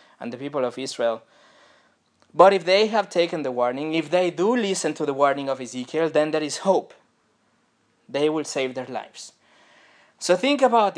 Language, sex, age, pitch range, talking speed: French, male, 20-39, 145-190 Hz, 180 wpm